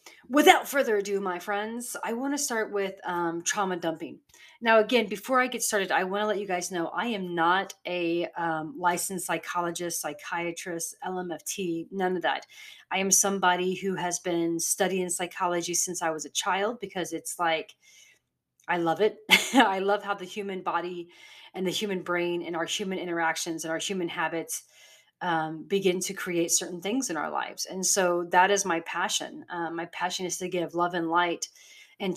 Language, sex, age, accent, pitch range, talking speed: English, female, 30-49, American, 175-205 Hz, 185 wpm